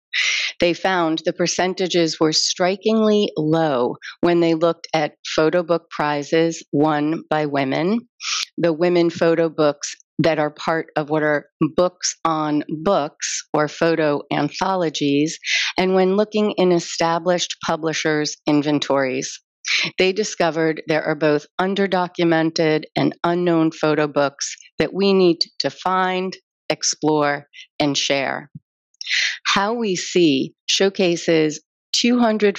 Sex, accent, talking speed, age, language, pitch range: female, American, 115 wpm, 40-59, English, 150-180 Hz